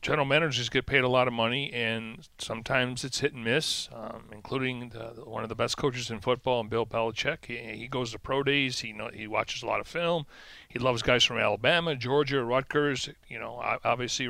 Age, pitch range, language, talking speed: 40-59, 120-145 Hz, English, 220 wpm